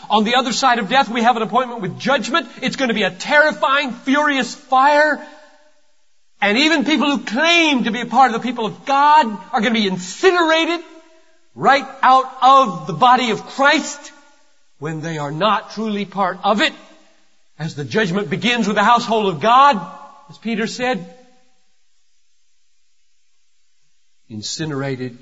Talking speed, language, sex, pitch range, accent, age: 160 wpm, English, male, 200-290 Hz, American, 40-59